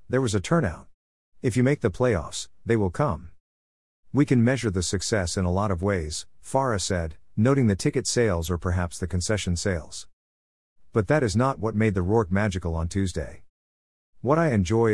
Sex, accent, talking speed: male, American, 190 wpm